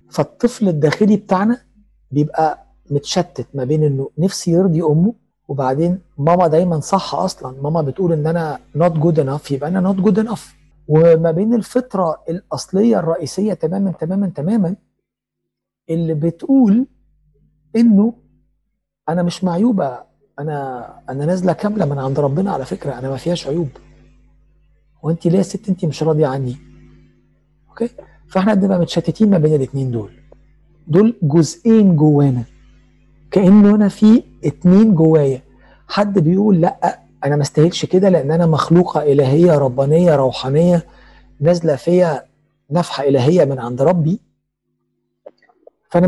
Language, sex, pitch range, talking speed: Arabic, male, 145-190 Hz, 130 wpm